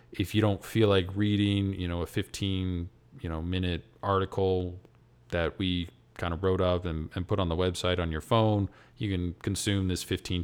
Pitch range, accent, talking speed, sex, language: 80-100 Hz, American, 195 wpm, male, English